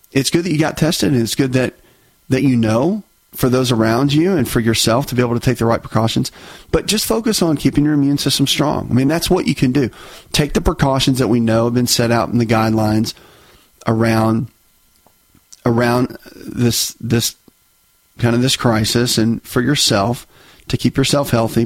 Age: 40-59